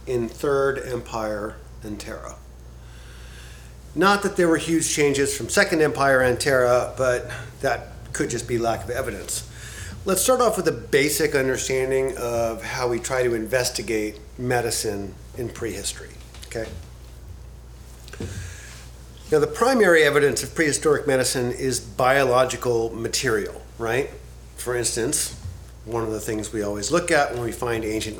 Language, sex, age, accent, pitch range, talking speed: English, male, 40-59, American, 95-130 Hz, 140 wpm